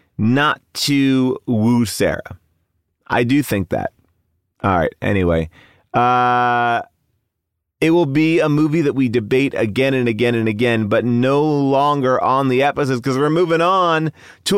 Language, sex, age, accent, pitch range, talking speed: English, male, 30-49, American, 100-135 Hz, 150 wpm